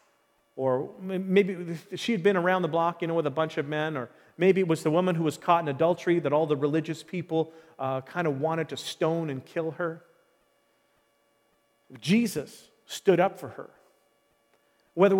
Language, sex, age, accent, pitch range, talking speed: English, male, 40-59, American, 145-190 Hz, 180 wpm